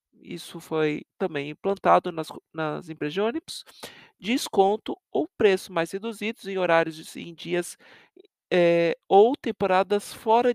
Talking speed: 130 wpm